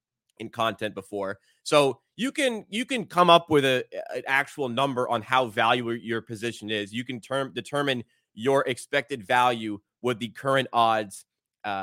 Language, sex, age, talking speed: English, male, 30-49, 165 wpm